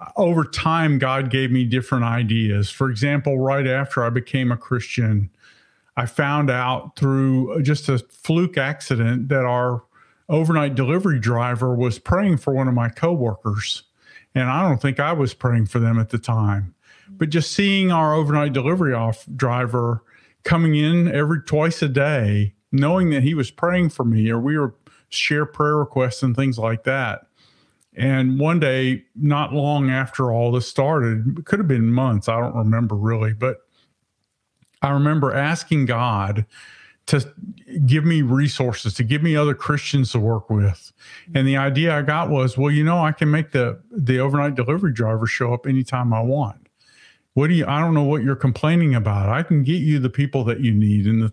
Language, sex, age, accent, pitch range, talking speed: English, male, 50-69, American, 120-150 Hz, 180 wpm